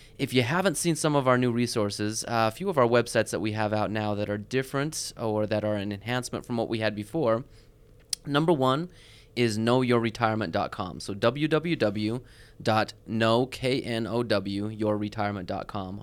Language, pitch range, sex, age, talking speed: English, 105-130 Hz, male, 20-39, 140 wpm